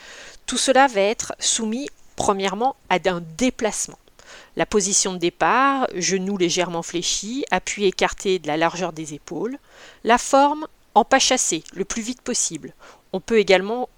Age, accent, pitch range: 40-59, French, 185-240 Hz